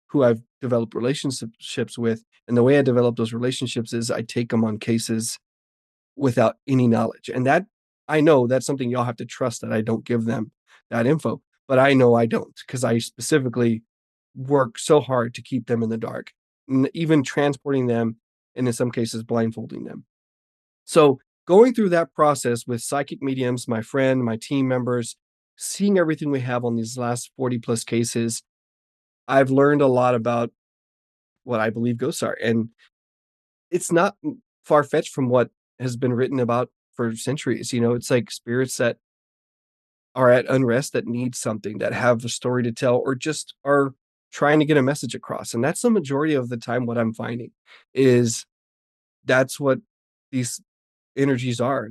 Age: 30-49